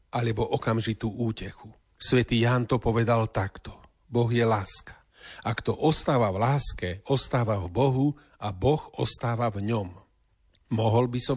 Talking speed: 145 wpm